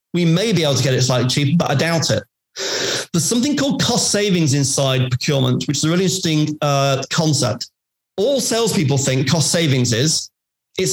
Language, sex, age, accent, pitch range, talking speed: English, male, 40-59, British, 135-185 Hz, 185 wpm